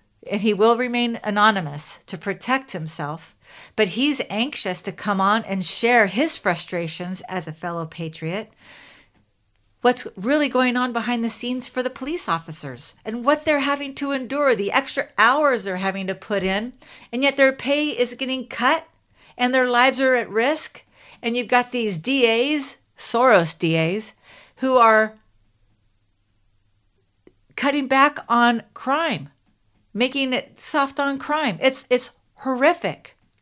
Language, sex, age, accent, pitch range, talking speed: English, female, 50-69, American, 170-250 Hz, 145 wpm